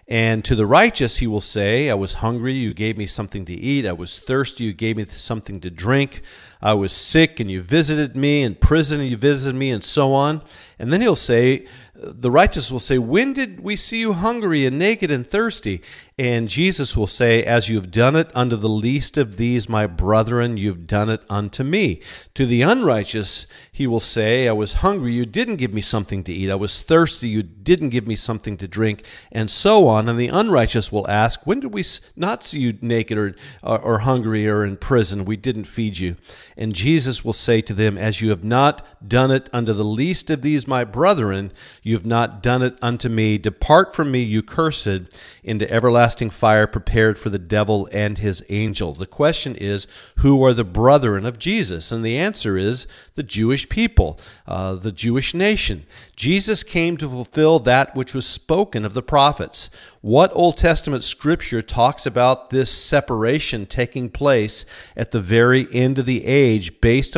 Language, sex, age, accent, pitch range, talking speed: English, male, 40-59, American, 105-135 Hz, 200 wpm